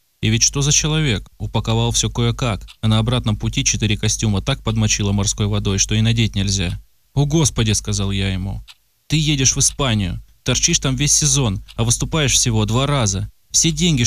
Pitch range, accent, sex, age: 105-145 Hz, native, male, 20-39